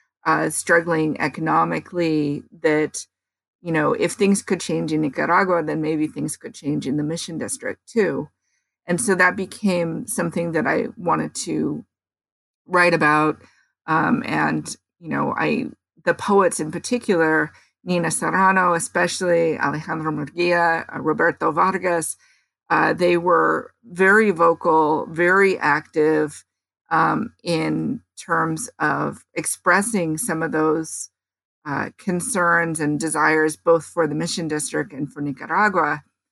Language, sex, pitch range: English, female, 155-180 Hz